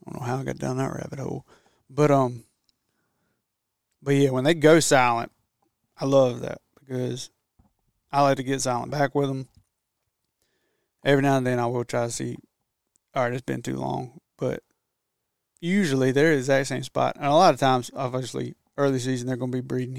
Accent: American